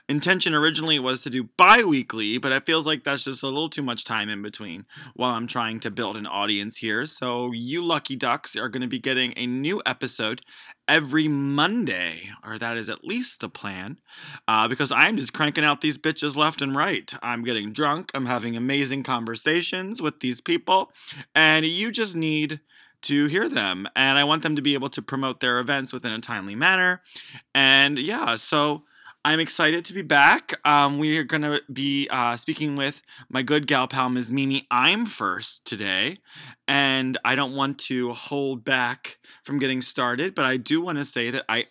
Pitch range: 120-150 Hz